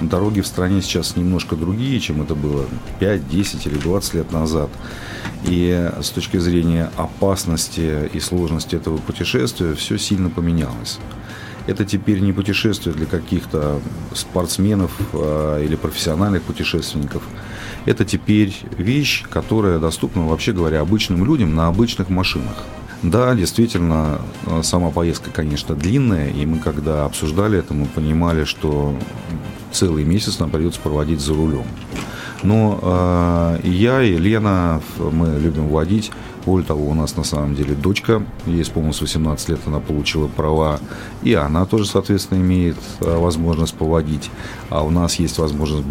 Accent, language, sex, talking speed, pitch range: native, Russian, male, 140 wpm, 80-100 Hz